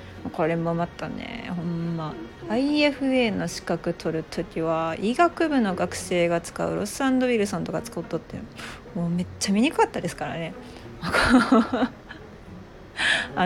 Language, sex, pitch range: Japanese, female, 170-235 Hz